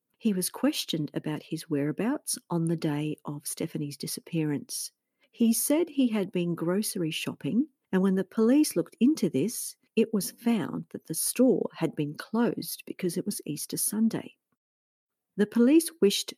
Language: English